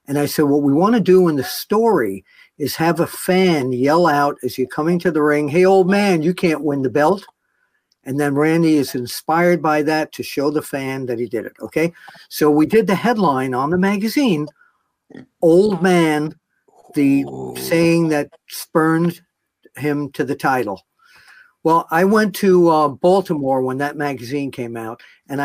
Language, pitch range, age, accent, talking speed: English, 130-175 Hz, 50-69, American, 180 wpm